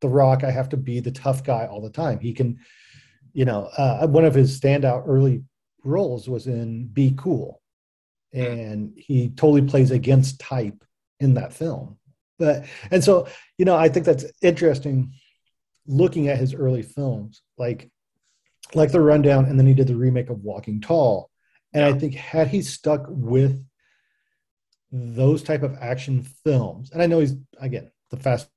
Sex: male